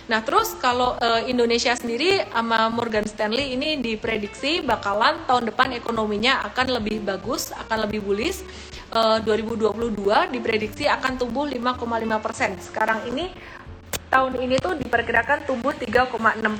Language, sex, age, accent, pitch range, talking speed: Indonesian, female, 30-49, native, 215-255 Hz, 130 wpm